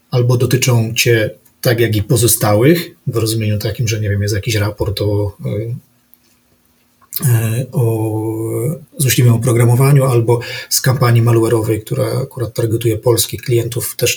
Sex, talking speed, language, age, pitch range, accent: male, 125 wpm, Polish, 30-49, 115-125 Hz, native